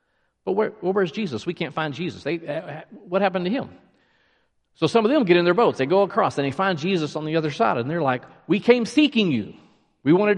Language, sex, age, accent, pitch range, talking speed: English, male, 50-69, American, 120-175 Hz, 245 wpm